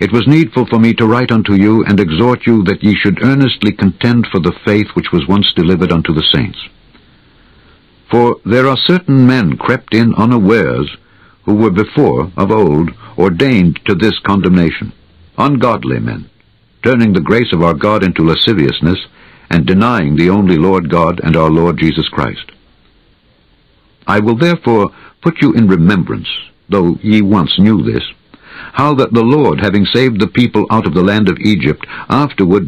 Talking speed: 170 wpm